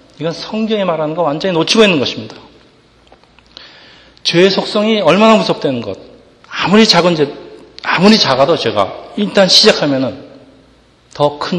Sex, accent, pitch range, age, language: male, native, 145-185 Hz, 40-59, Korean